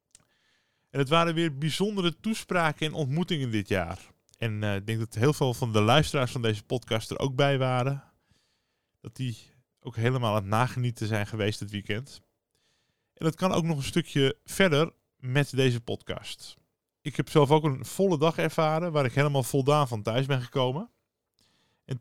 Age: 20-39